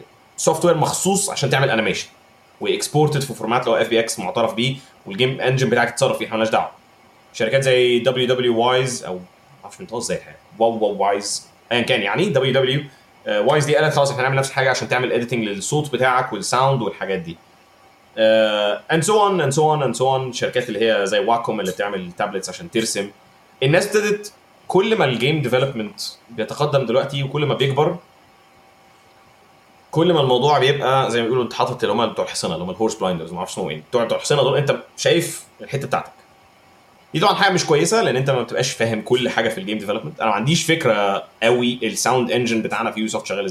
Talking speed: 190 wpm